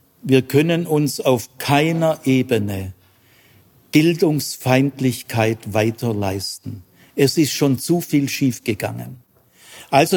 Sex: male